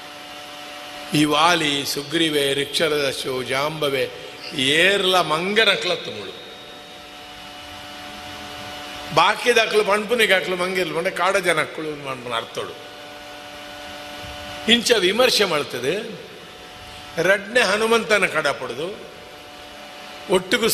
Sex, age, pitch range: male, 50-69, 155-230 Hz